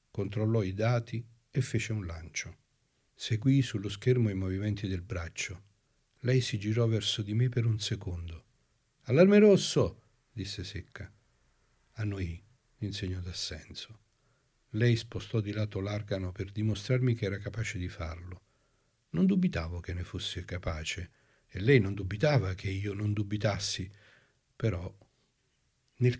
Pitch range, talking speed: 100-130 Hz, 135 wpm